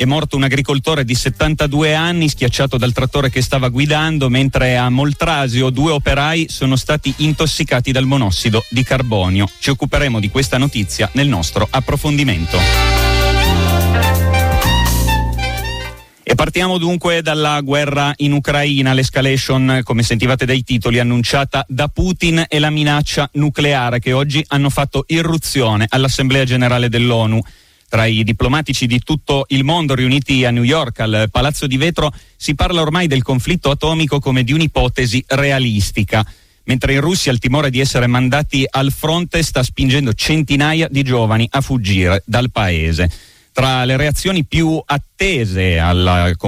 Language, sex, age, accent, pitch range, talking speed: Italian, male, 30-49, native, 110-145 Hz, 140 wpm